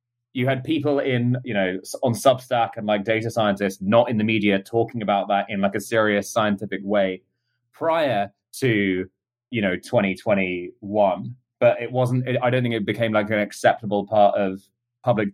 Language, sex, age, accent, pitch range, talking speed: English, male, 20-39, British, 100-120 Hz, 170 wpm